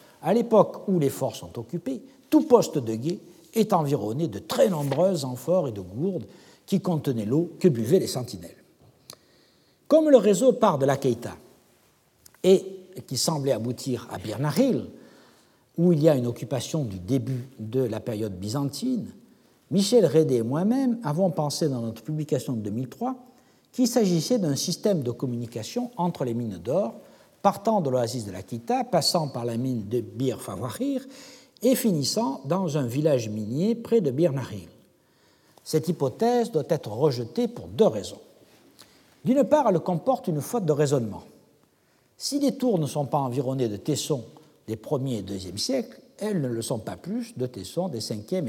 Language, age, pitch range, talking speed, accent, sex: French, 60-79, 125-195 Hz, 170 wpm, French, male